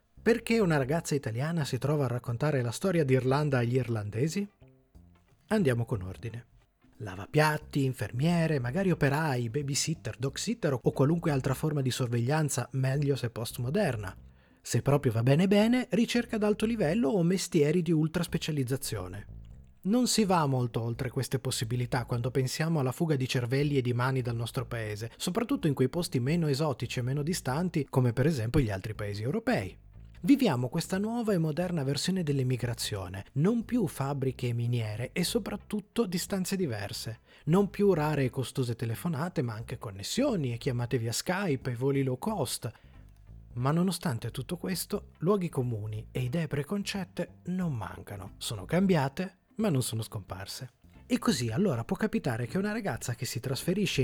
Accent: native